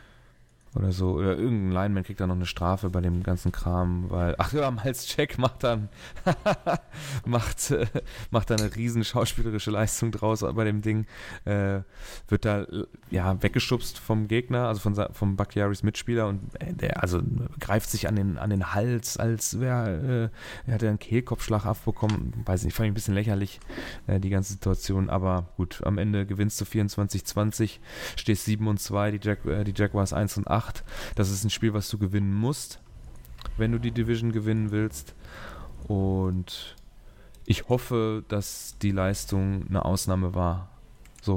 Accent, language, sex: German, German, male